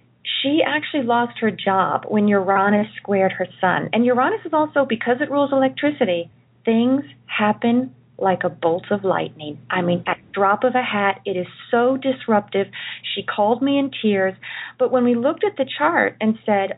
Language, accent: English, American